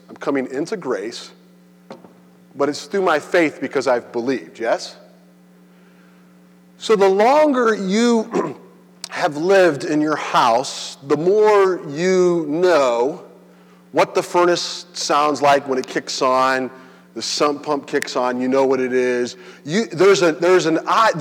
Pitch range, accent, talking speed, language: 145-195 Hz, American, 140 wpm, English